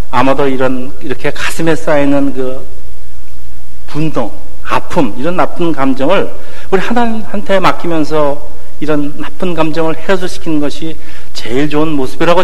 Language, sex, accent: Korean, male, native